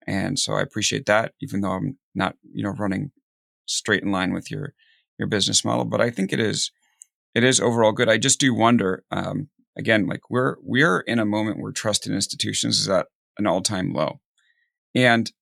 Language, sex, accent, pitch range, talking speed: English, male, American, 105-135 Hz, 200 wpm